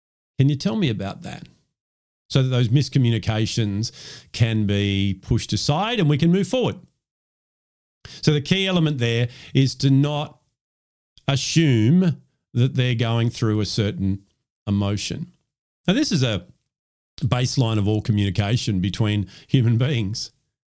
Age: 50-69